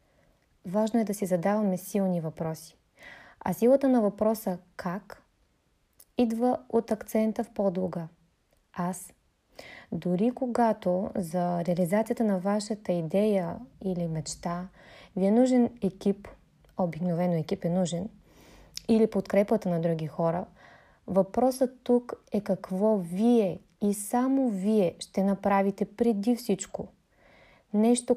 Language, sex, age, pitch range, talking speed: Bulgarian, female, 20-39, 185-225 Hz, 115 wpm